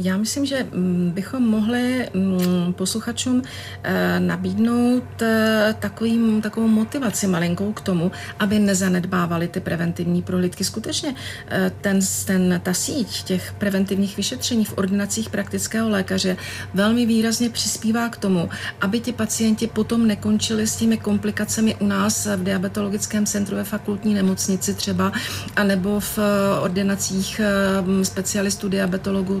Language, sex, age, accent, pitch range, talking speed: Czech, female, 40-59, native, 190-220 Hz, 110 wpm